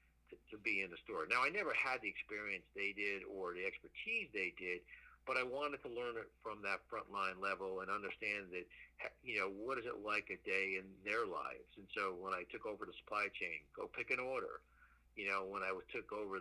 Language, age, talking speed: English, 50-69, 225 wpm